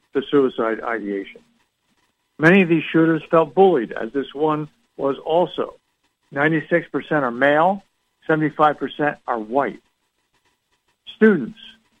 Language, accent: English, American